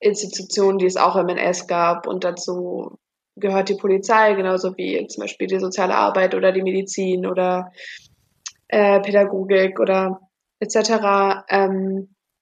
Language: German